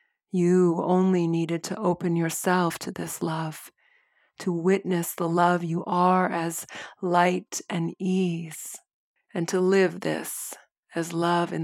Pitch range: 165-185 Hz